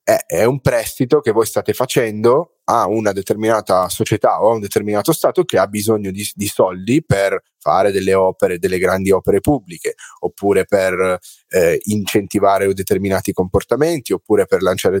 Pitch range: 100-145 Hz